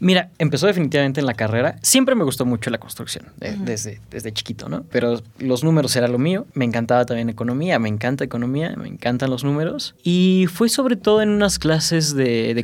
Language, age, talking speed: Spanish, 20-39, 205 wpm